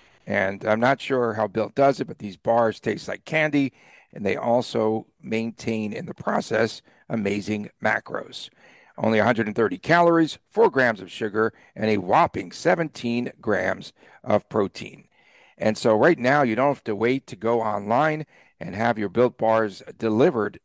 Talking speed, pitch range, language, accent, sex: 160 wpm, 110-130 Hz, English, American, male